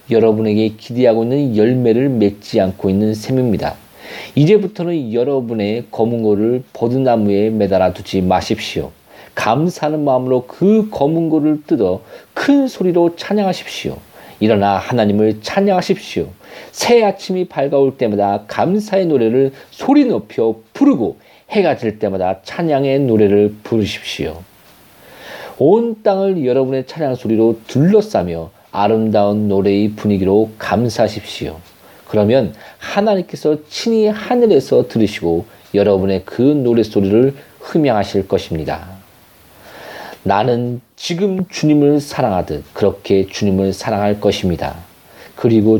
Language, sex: Korean, male